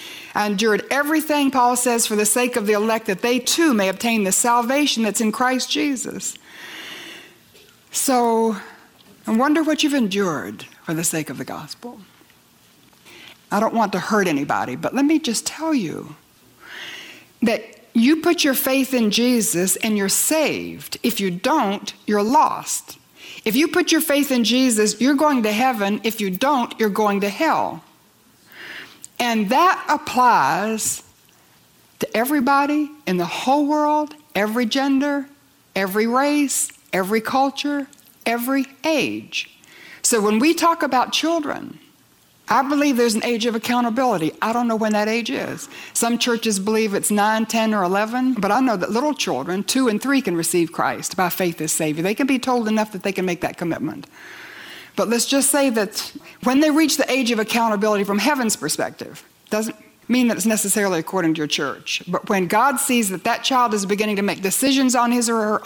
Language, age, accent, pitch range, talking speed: English, 60-79, American, 210-270 Hz, 175 wpm